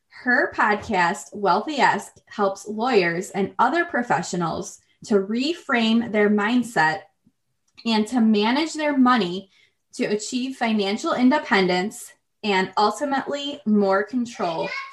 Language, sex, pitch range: English, female, 195-245 Hz